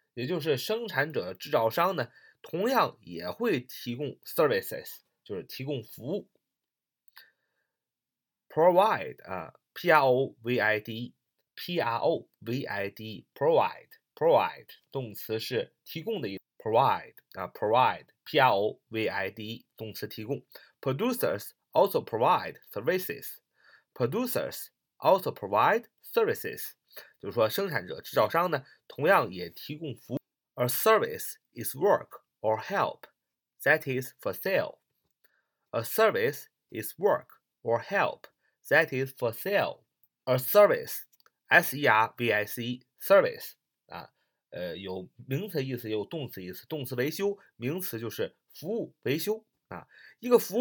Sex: male